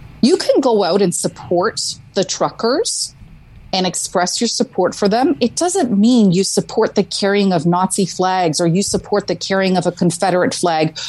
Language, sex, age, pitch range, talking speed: English, female, 40-59, 180-230 Hz, 180 wpm